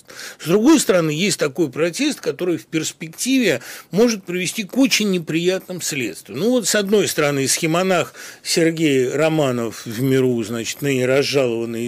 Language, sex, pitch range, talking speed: Russian, male, 150-230 Hz, 145 wpm